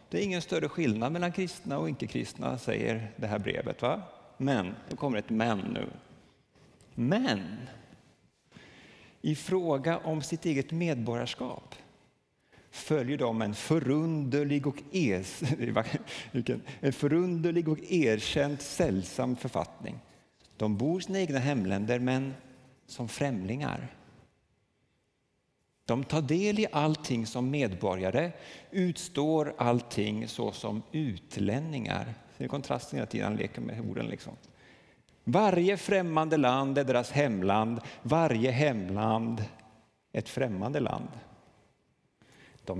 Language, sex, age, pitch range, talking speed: Swedish, male, 50-69, 115-160 Hz, 110 wpm